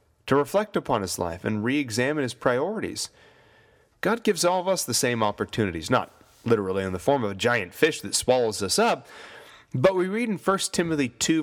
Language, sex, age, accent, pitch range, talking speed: English, male, 40-59, American, 110-165 Hz, 195 wpm